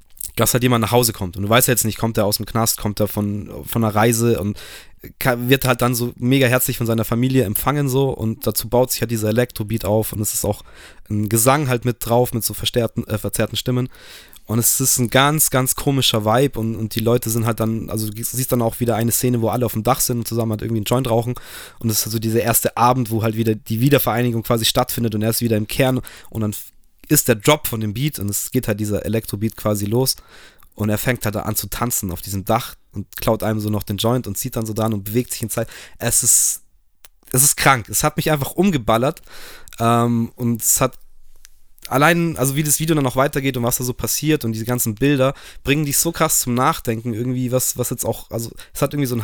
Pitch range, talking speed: 110-130 Hz, 250 wpm